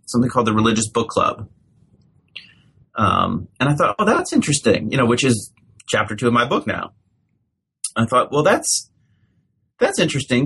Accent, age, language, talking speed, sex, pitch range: American, 30-49, English, 165 wpm, male, 105-135 Hz